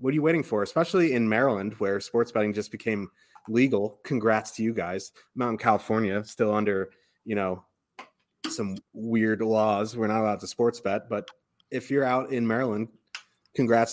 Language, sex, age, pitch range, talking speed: English, male, 30-49, 105-125 Hz, 170 wpm